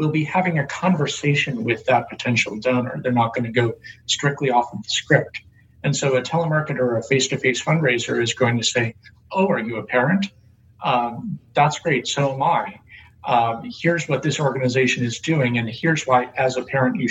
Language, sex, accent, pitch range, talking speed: English, male, American, 120-145 Hz, 195 wpm